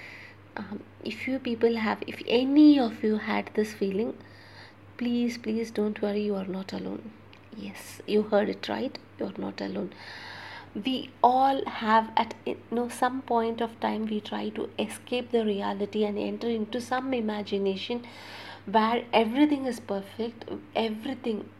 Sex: female